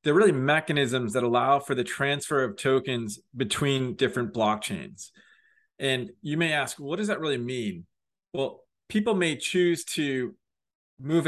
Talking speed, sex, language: 150 wpm, male, English